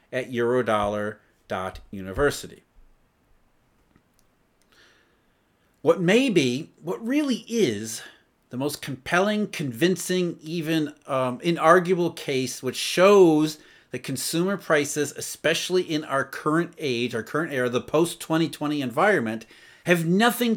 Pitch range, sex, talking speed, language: 130-190 Hz, male, 100 wpm, English